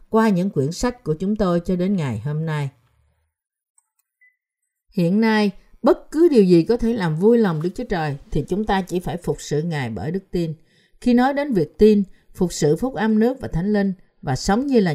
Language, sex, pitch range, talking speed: Vietnamese, female, 155-220 Hz, 215 wpm